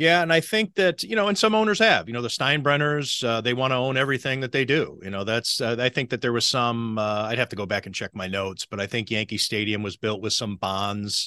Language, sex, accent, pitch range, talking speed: English, male, American, 110-125 Hz, 290 wpm